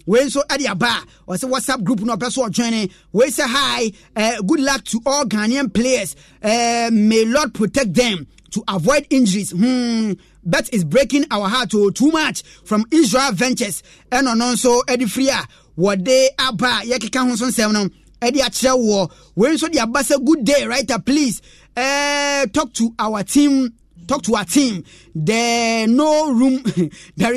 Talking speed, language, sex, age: 170 wpm, English, male, 30-49